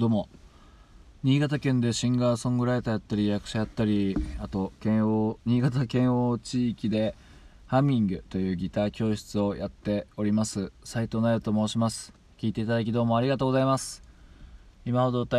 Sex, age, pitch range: male, 20-39, 90-115 Hz